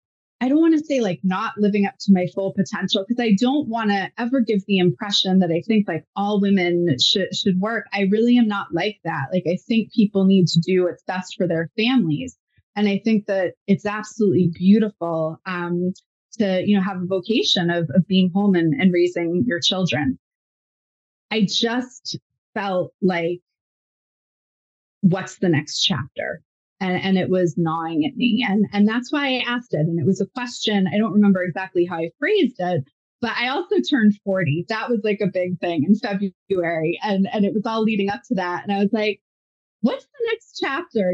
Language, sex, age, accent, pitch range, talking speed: English, female, 20-39, American, 185-225 Hz, 200 wpm